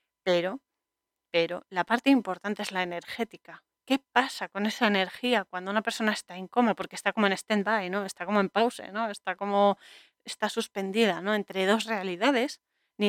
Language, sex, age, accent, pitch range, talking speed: Spanish, female, 30-49, Spanish, 185-230 Hz, 185 wpm